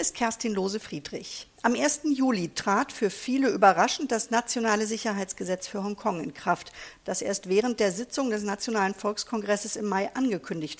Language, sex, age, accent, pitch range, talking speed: English, female, 50-69, German, 200-250 Hz, 160 wpm